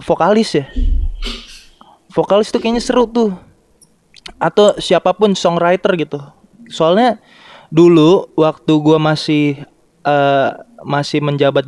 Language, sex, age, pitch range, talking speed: Indonesian, male, 20-39, 145-175 Hz, 100 wpm